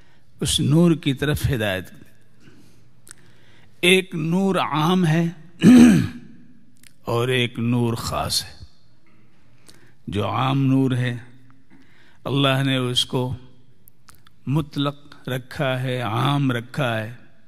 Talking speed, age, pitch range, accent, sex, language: 95 wpm, 50-69, 115-150 Hz, Indian, male, English